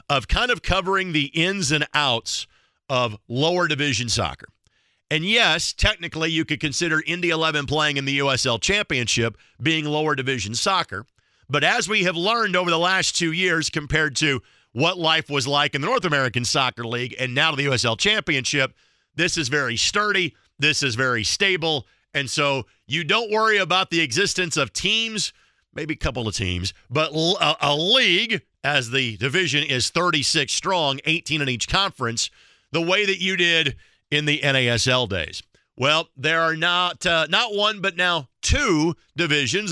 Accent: American